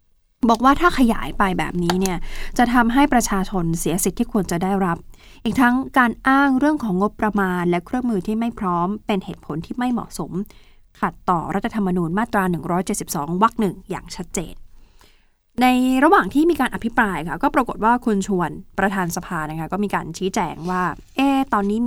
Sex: female